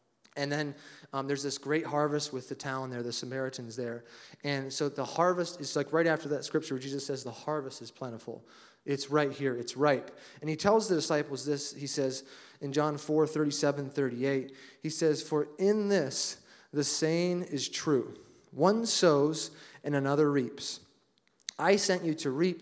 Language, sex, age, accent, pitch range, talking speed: English, male, 30-49, American, 135-160 Hz, 180 wpm